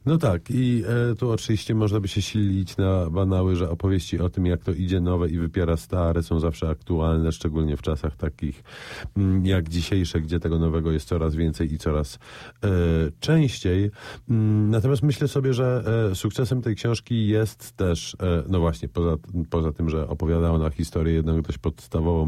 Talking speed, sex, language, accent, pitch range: 160 wpm, male, Polish, native, 80-100 Hz